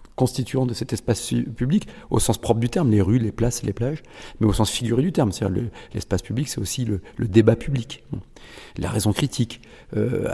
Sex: male